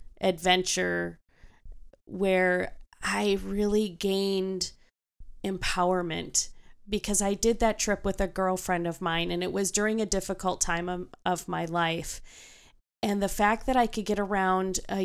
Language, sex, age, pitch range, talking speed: English, female, 30-49, 180-205 Hz, 145 wpm